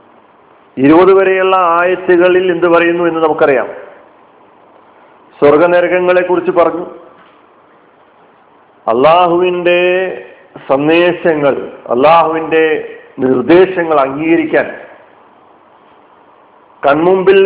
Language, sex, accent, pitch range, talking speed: Malayalam, male, native, 165-195 Hz, 50 wpm